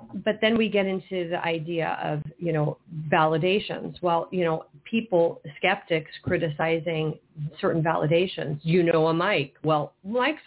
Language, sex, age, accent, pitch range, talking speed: English, female, 40-59, American, 150-180 Hz, 150 wpm